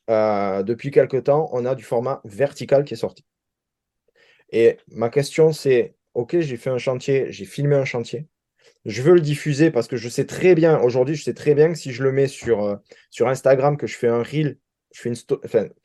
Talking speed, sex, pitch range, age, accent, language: 225 wpm, male, 125-155 Hz, 20-39, French, French